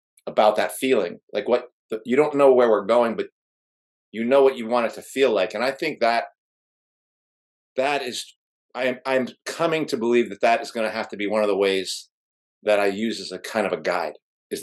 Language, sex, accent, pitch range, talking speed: English, male, American, 110-140 Hz, 220 wpm